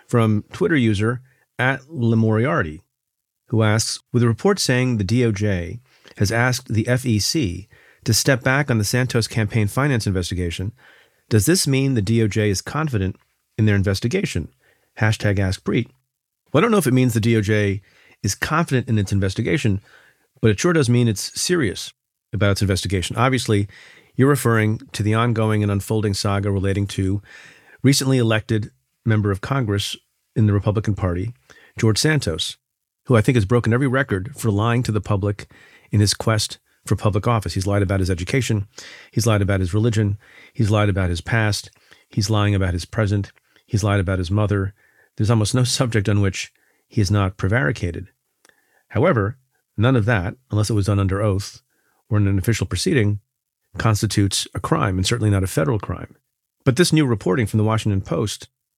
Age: 40-59